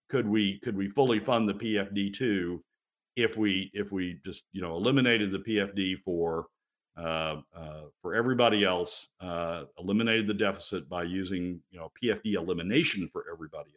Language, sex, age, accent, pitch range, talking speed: English, male, 50-69, American, 85-115 Hz, 160 wpm